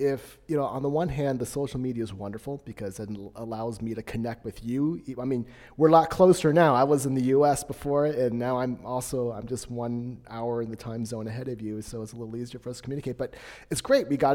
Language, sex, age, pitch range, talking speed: English, male, 30-49, 115-140 Hz, 260 wpm